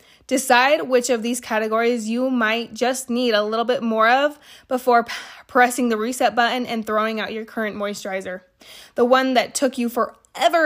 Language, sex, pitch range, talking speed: English, female, 220-255 Hz, 175 wpm